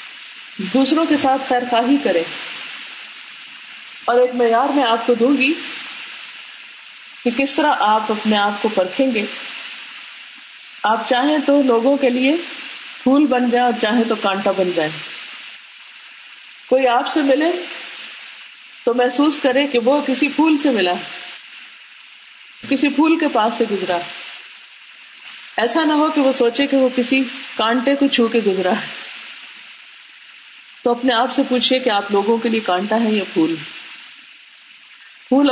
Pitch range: 215-275 Hz